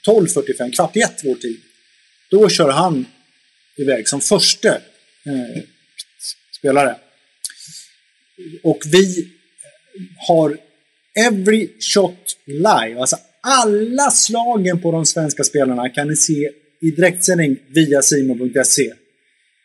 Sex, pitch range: male, 135-180 Hz